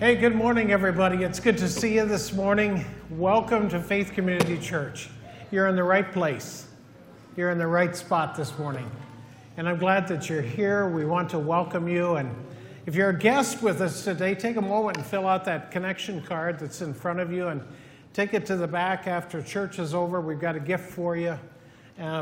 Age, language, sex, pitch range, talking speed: 50-69, English, male, 155-190 Hz, 210 wpm